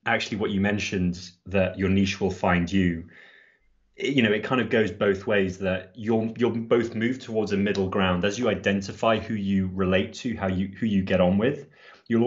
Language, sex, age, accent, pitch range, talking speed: English, male, 30-49, British, 95-115 Hz, 205 wpm